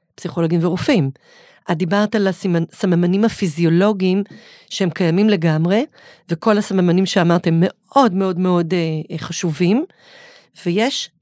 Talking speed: 110 wpm